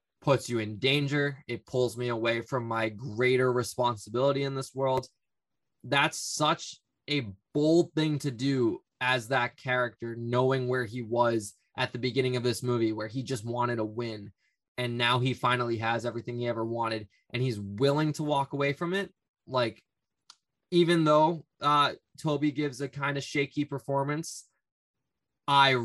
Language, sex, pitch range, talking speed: English, male, 115-140 Hz, 165 wpm